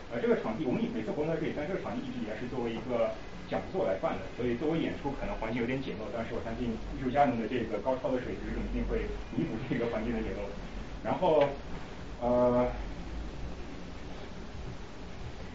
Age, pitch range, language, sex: 30-49, 105-130 Hz, Chinese, male